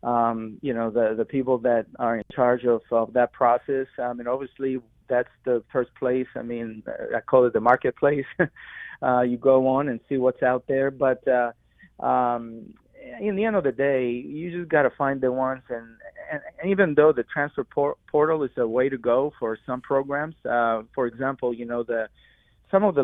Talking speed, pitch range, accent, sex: 200 wpm, 120-135 Hz, American, male